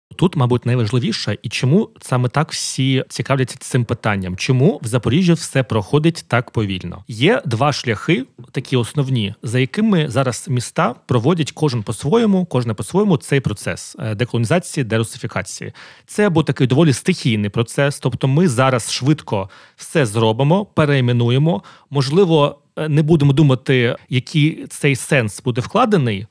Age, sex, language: 30-49, male, Ukrainian